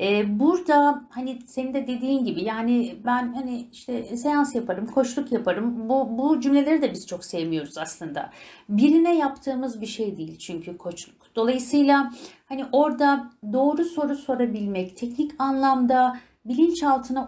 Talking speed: 130 wpm